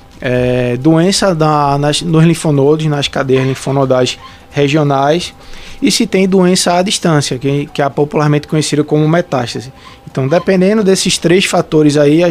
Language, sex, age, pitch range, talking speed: Portuguese, male, 20-39, 145-180 Hz, 130 wpm